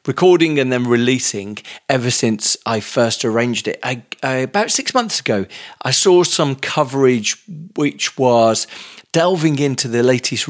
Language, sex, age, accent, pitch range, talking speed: English, male, 40-59, British, 115-150 Hz, 135 wpm